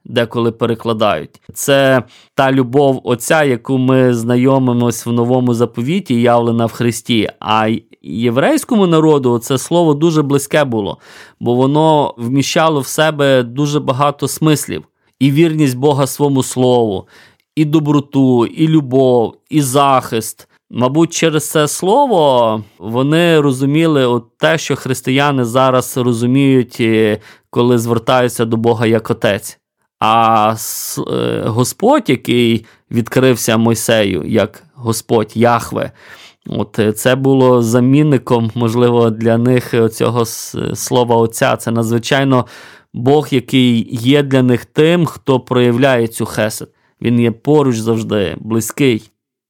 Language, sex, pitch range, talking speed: Ukrainian, male, 115-150 Hz, 115 wpm